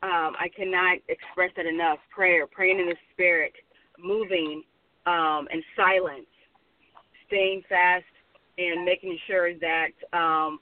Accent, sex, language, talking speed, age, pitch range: American, female, English, 125 wpm, 30-49, 175-250 Hz